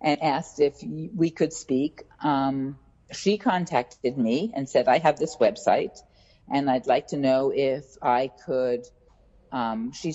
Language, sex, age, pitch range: English, female, 50-69, 130-165 Hz